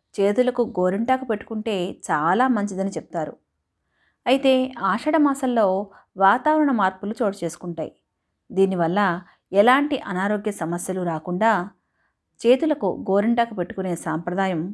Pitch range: 180-230 Hz